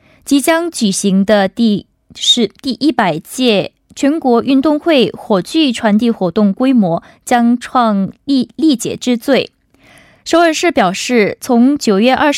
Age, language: 20-39, Korean